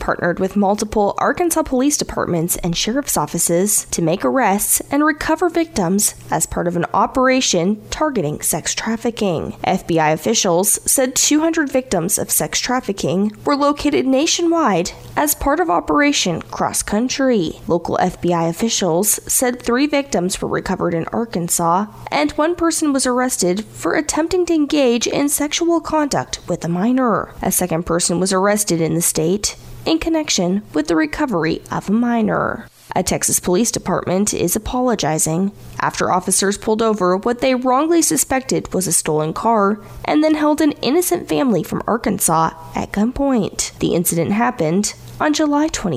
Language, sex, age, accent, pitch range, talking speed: English, female, 20-39, American, 180-285 Hz, 150 wpm